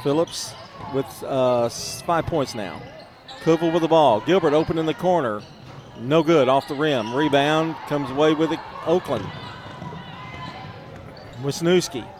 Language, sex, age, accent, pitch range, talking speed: English, male, 40-59, American, 135-180 Hz, 135 wpm